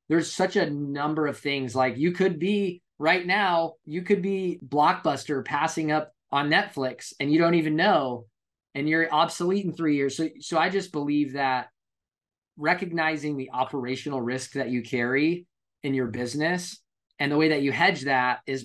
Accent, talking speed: American, 175 wpm